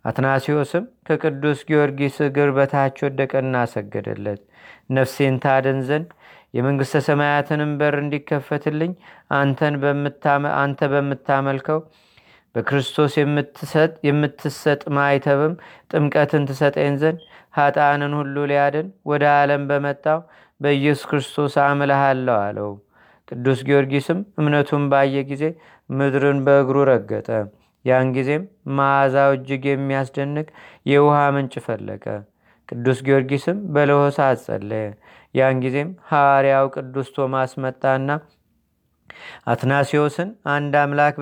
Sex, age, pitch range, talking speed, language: male, 30-49, 135-150 Hz, 85 wpm, Amharic